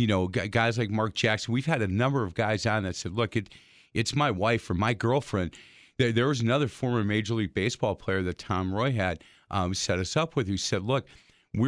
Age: 50-69